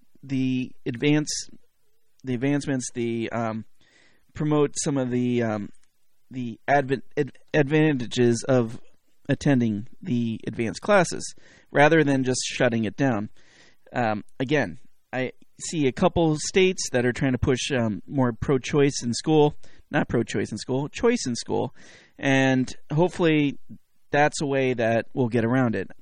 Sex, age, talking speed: male, 30-49, 140 wpm